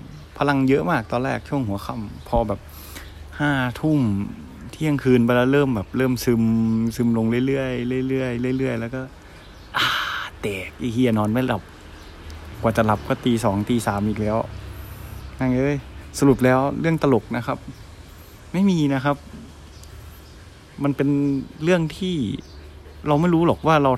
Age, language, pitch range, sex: 20-39, Thai, 95-130 Hz, male